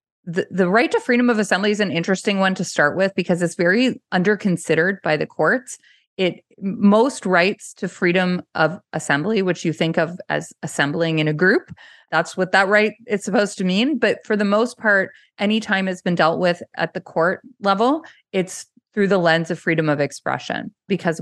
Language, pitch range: English, 160-210 Hz